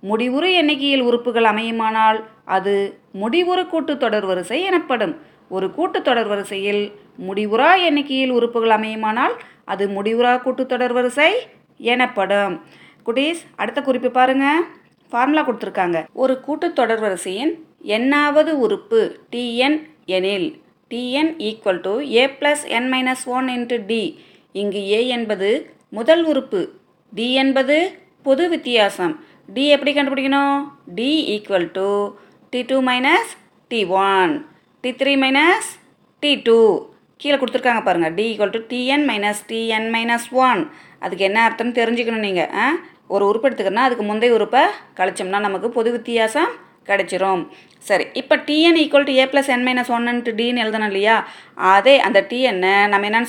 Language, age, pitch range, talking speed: Tamil, 30-49, 210-280 Hz, 125 wpm